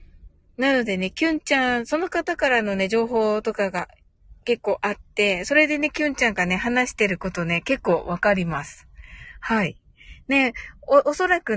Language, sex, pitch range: Japanese, female, 155-255 Hz